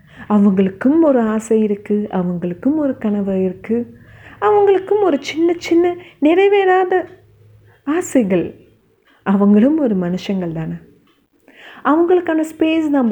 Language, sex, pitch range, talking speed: Tamil, female, 200-310 Hz, 95 wpm